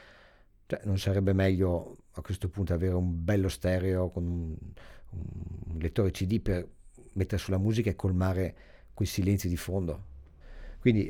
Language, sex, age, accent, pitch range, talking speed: Italian, male, 50-69, native, 85-100 Hz, 145 wpm